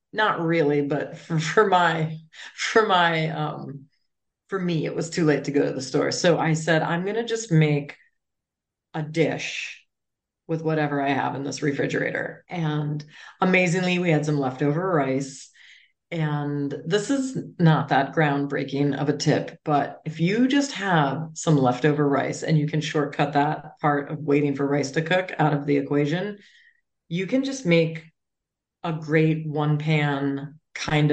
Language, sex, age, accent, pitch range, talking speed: English, female, 40-59, American, 145-175 Hz, 165 wpm